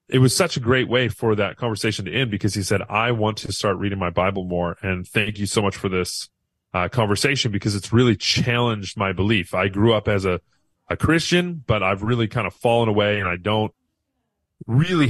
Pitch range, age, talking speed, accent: 95-125 Hz, 30-49, 220 wpm, American